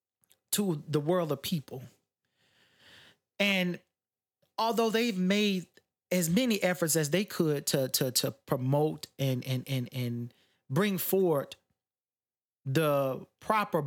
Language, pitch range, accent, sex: English, 135-185 Hz, American, male